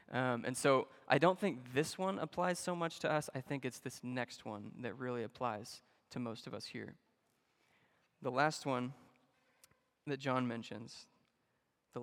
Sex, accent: male, American